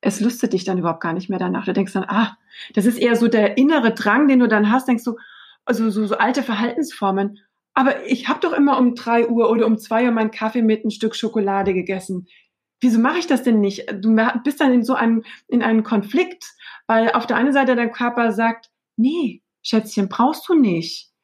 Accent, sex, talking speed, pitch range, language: German, female, 220 wpm, 205-250 Hz, German